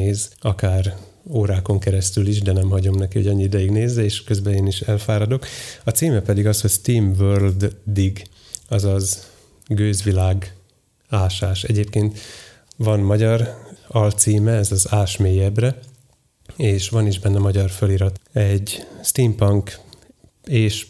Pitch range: 95-110 Hz